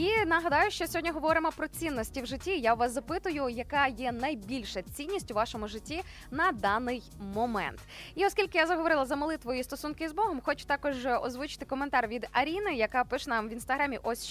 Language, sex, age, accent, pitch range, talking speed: Ukrainian, female, 20-39, native, 230-305 Hz, 185 wpm